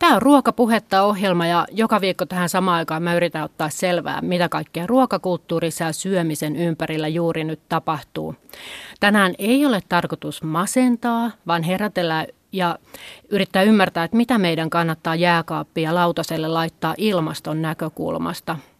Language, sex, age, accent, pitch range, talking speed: Finnish, female, 30-49, native, 165-205 Hz, 135 wpm